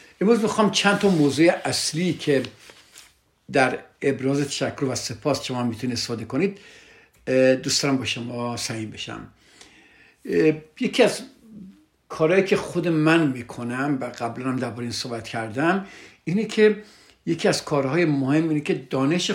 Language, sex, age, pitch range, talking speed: Persian, male, 60-79, 120-165 Hz, 130 wpm